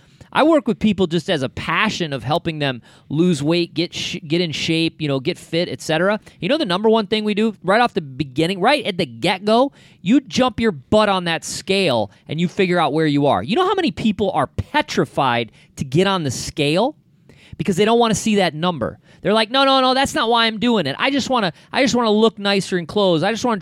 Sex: male